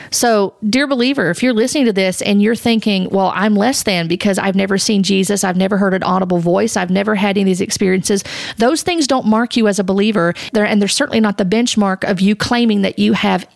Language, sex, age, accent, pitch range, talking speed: English, female, 40-59, American, 200-245 Hz, 235 wpm